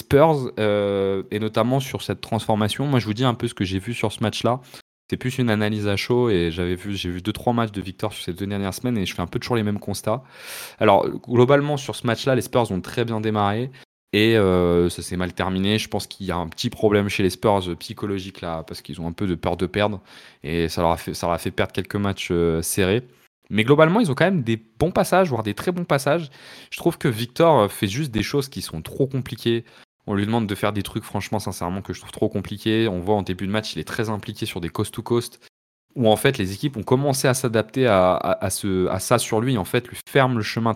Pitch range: 95-125 Hz